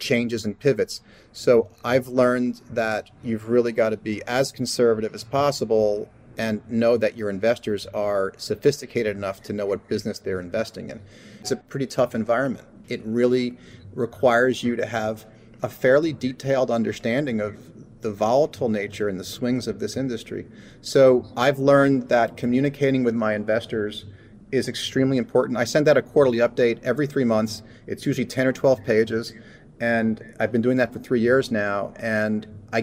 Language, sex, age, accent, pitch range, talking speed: English, male, 30-49, American, 110-130 Hz, 170 wpm